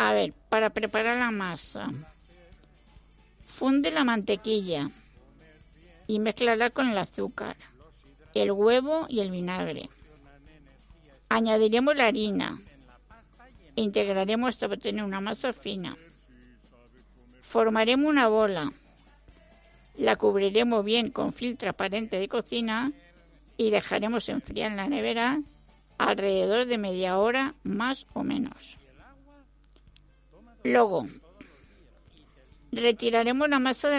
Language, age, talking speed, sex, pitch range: Spanish, 50-69, 100 wpm, female, 200-245 Hz